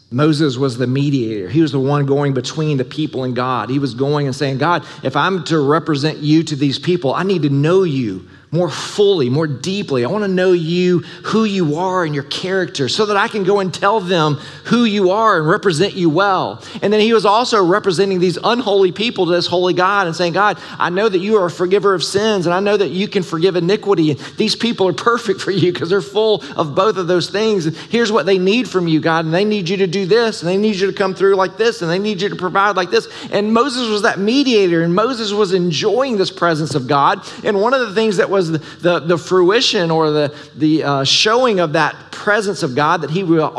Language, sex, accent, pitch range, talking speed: English, male, American, 150-200 Hz, 245 wpm